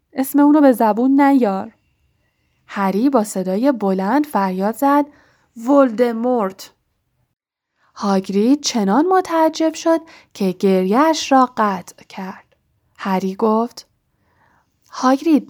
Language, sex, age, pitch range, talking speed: Persian, female, 10-29, 200-280 Hz, 95 wpm